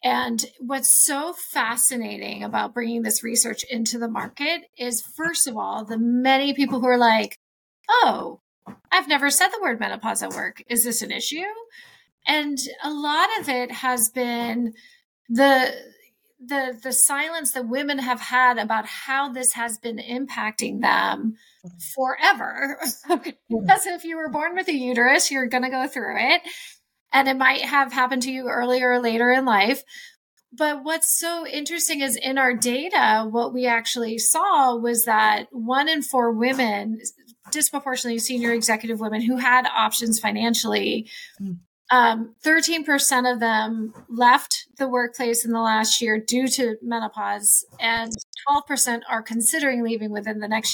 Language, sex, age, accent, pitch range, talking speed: English, female, 30-49, American, 230-280 Hz, 155 wpm